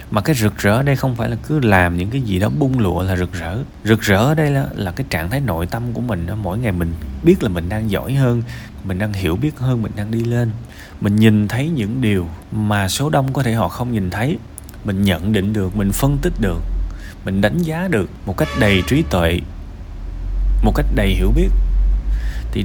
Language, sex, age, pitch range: Vietnamese, male, 20-39, 90-120 Hz